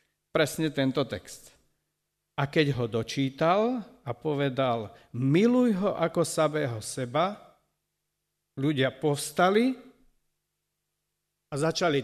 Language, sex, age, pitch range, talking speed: Slovak, male, 50-69, 135-185 Hz, 90 wpm